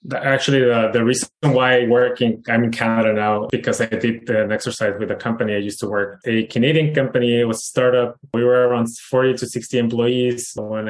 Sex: male